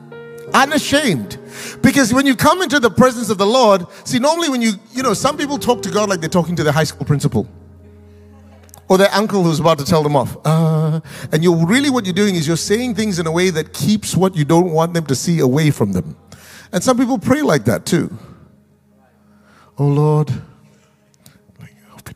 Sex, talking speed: male, 205 wpm